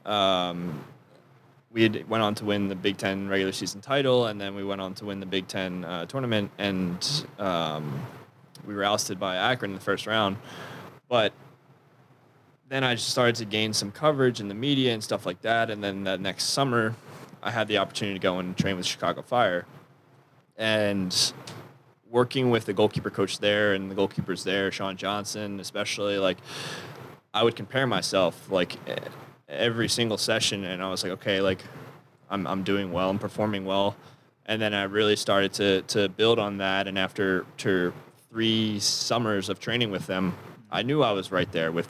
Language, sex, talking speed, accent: English, male, 185 wpm, American